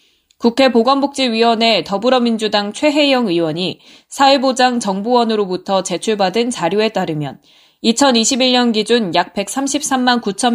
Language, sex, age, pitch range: Korean, female, 20-39, 185-250 Hz